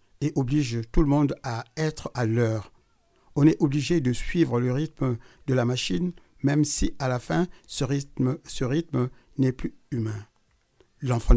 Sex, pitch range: male, 120-155 Hz